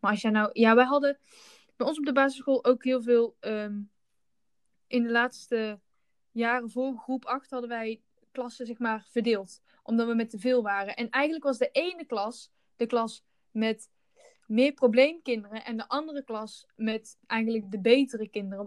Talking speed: 175 wpm